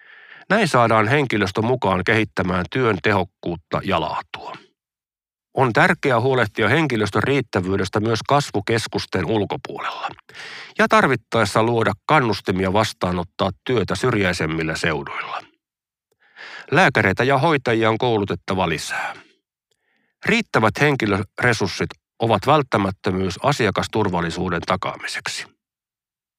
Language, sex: Finnish, male